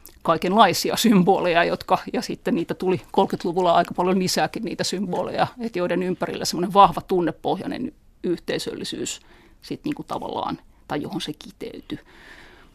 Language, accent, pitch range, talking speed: Finnish, native, 170-220 Hz, 125 wpm